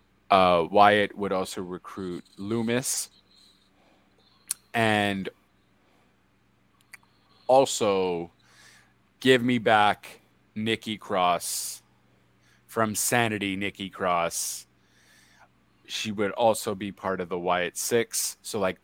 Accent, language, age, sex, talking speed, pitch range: American, English, 30-49, male, 90 wpm, 90-110 Hz